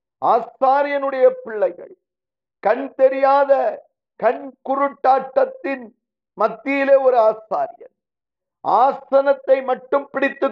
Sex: male